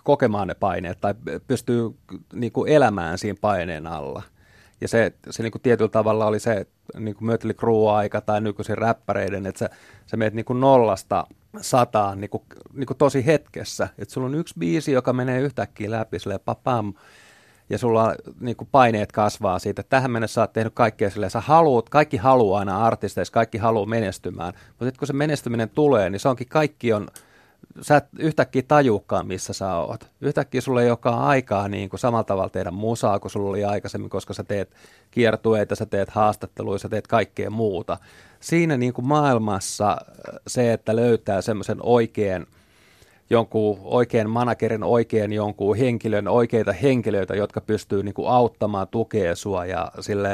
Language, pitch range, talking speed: Finnish, 100-120 Hz, 160 wpm